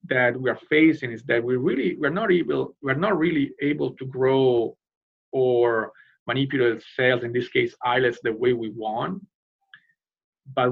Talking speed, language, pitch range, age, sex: 160 wpm, English, 120-155 Hz, 40-59, male